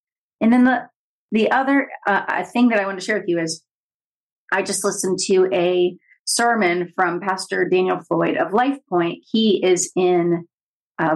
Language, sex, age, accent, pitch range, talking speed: English, female, 30-49, American, 170-215 Hz, 170 wpm